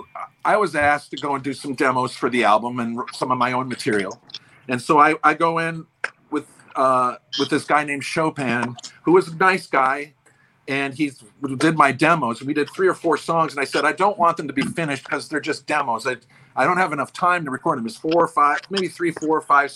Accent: American